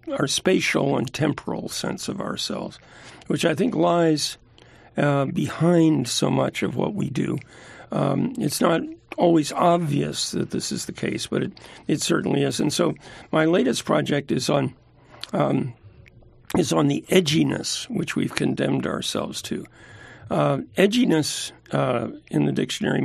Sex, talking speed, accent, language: male, 150 wpm, American, English